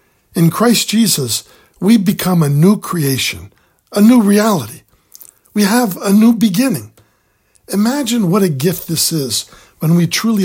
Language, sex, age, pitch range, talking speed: English, male, 60-79, 135-200 Hz, 145 wpm